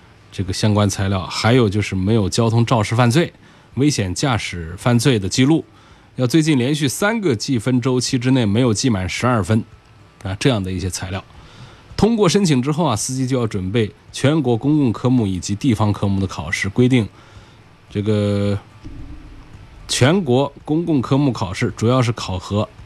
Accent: native